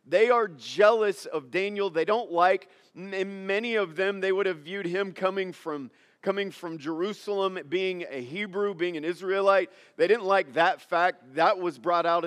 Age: 40-59